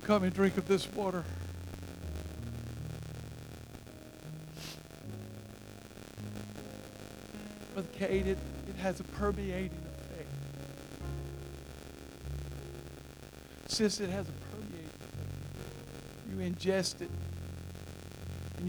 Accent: American